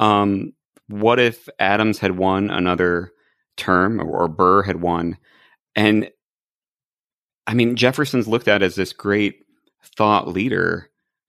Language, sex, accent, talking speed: English, male, American, 130 wpm